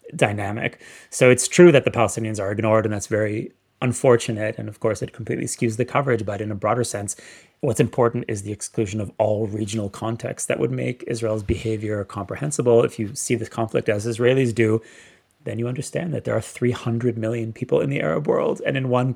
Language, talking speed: English, 205 wpm